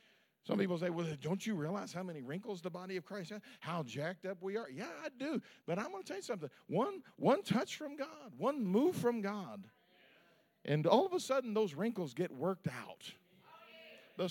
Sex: male